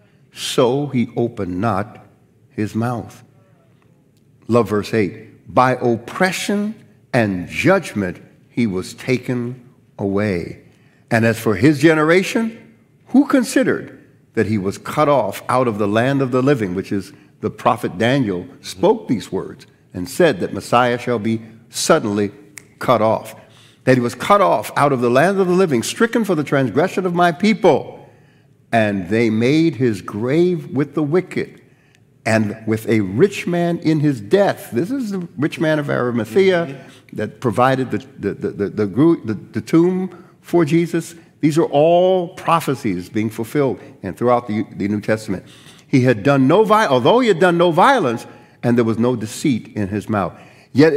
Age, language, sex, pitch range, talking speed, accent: 50-69, English, male, 115-170 Hz, 155 wpm, American